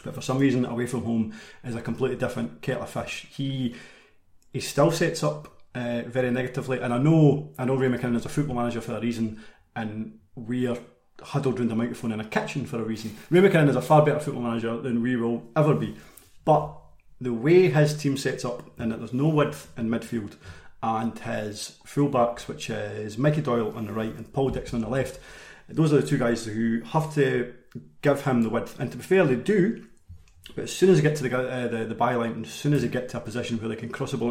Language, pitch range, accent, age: English, 115-140 Hz, British, 30-49